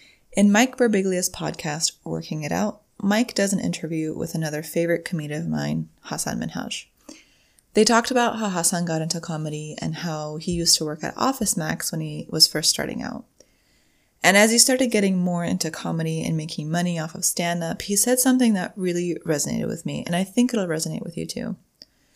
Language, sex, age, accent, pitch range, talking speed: English, female, 20-39, American, 155-205 Hz, 195 wpm